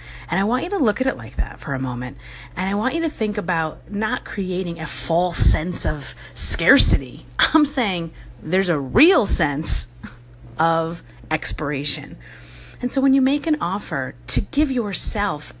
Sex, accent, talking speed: female, American, 175 wpm